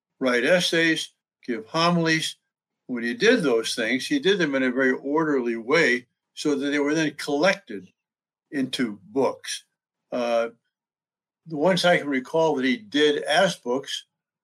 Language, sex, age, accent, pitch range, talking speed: English, male, 60-79, American, 120-150 Hz, 150 wpm